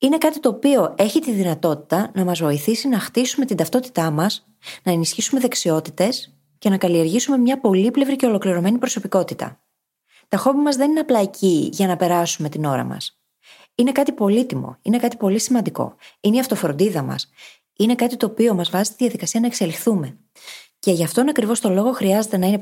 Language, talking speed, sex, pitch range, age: Greek, 185 wpm, female, 170-235 Hz, 20-39